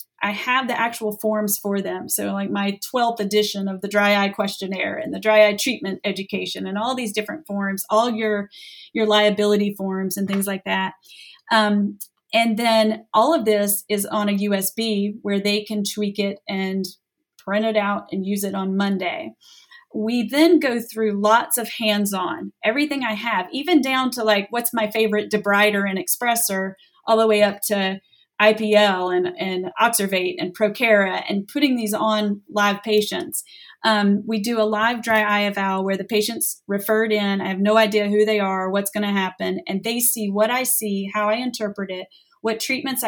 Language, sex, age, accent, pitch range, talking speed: English, female, 30-49, American, 200-225 Hz, 185 wpm